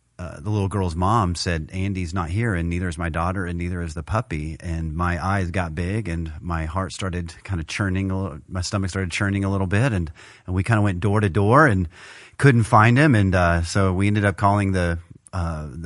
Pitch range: 90-105 Hz